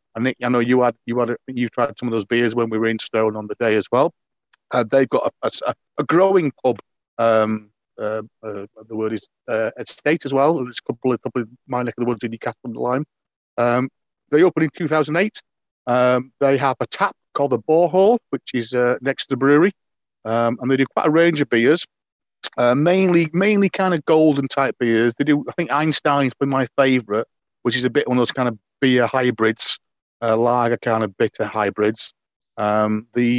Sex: male